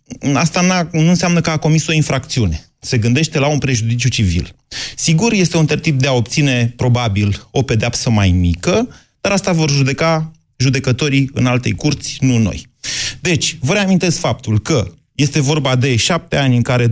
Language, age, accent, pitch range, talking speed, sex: Romanian, 30-49, native, 115-150 Hz, 170 wpm, male